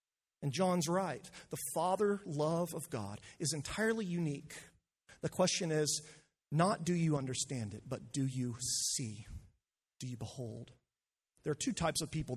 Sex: male